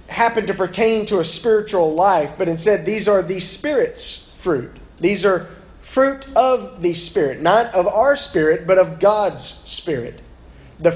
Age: 30-49